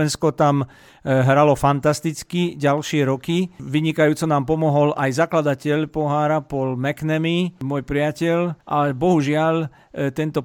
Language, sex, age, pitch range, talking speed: Slovak, male, 50-69, 145-185 Hz, 110 wpm